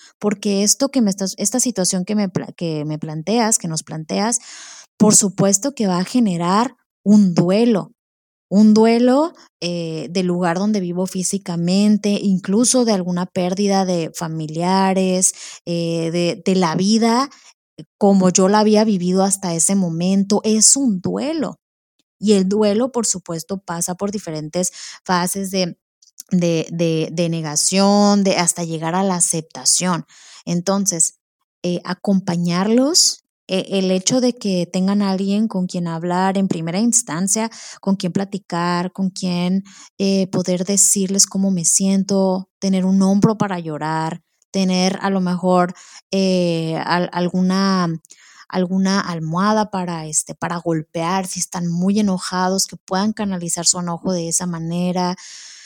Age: 20-39